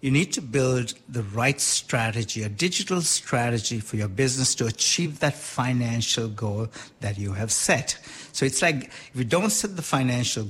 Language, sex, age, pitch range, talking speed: English, male, 60-79, 120-170 Hz, 175 wpm